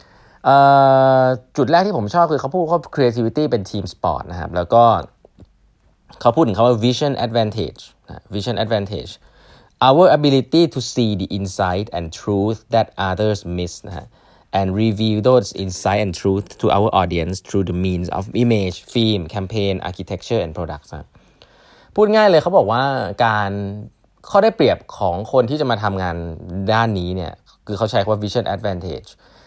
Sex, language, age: male, Thai, 20-39